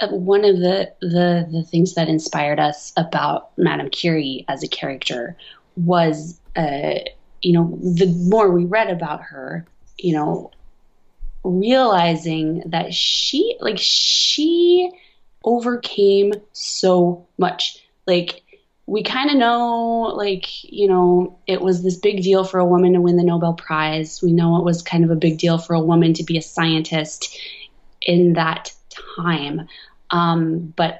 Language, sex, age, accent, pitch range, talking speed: English, female, 20-39, American, 165-200 Hz, 150 wpm